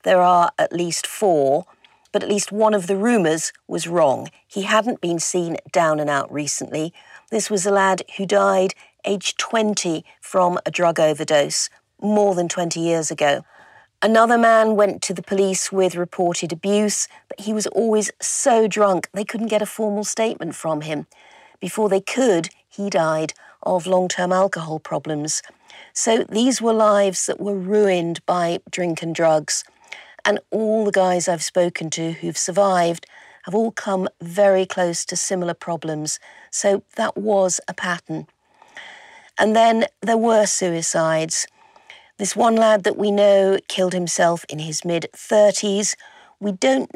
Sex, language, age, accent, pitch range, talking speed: female, English, 50-69, British, 170-215 Hz, 155 wpm